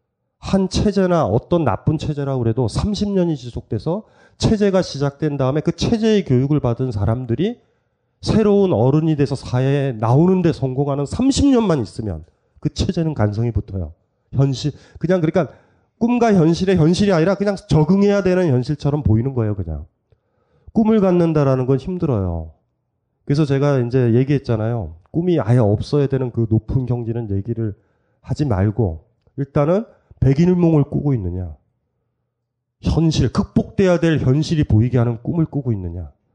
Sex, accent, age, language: male, native, 30-49, Korean